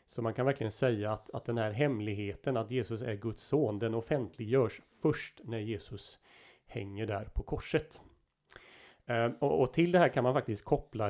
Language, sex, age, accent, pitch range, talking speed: Swedish, male, 30-49, native, 105-125 Hz, 185 wpm